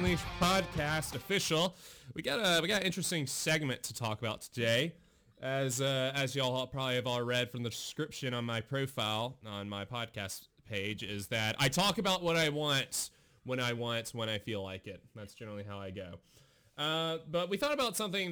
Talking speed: 195 wpm